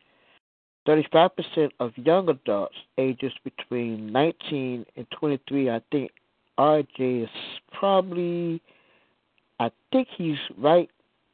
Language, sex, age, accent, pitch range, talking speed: English, male, 60-79, American, 125-165 Hz, 95 wpm